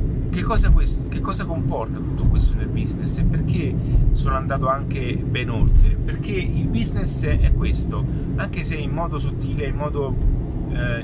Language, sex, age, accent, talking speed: Italian, male, 30-49, native, 165 wpm